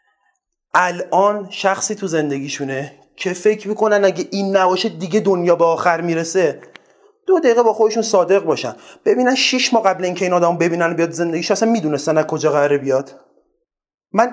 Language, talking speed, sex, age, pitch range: Persian, 170 wpm, male, 30-49, 170-220 Hz